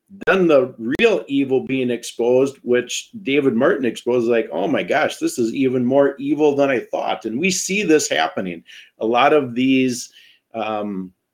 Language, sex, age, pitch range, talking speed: English, male, 50-69, 115-135 Hz, 170 wpm